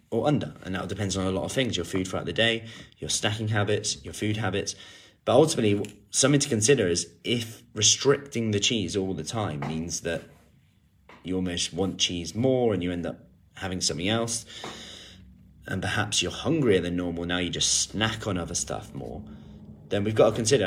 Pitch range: 95-120 Hz